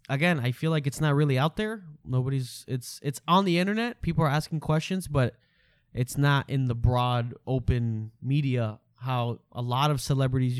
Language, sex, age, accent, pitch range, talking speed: English, male, 10-29, American, 120-145 Hz, 180 wpm